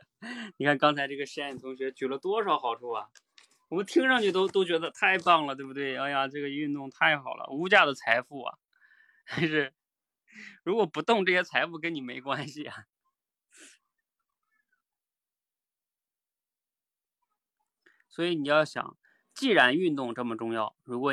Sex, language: male, Chinese